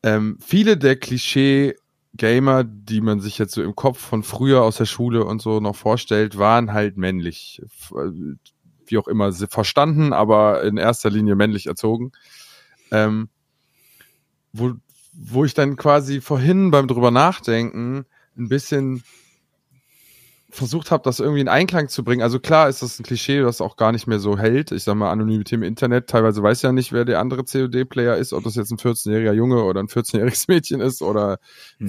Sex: male